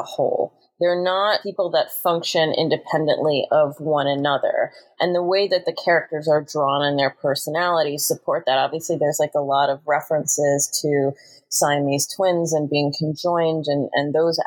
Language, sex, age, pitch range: English, female, 30-49, 140-165 Hz